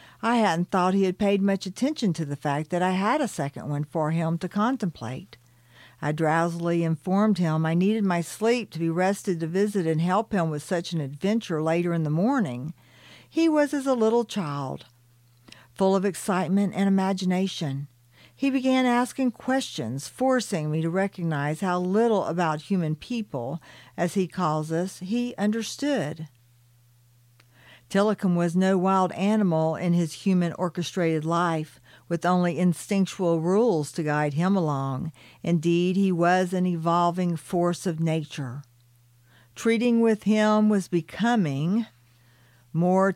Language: English